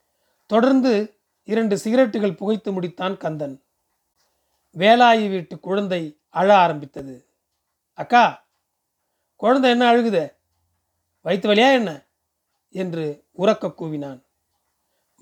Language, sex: Tamil, male